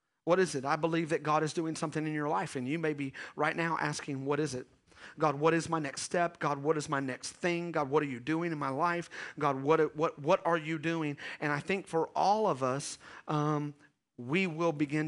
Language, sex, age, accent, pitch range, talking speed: English, male, 40-59, American, 145-175 Hz, 245 wpm